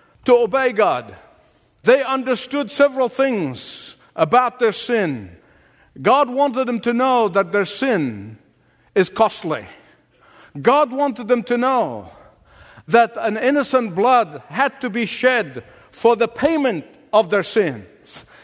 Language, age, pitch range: English, 50-69, 210-255 Hz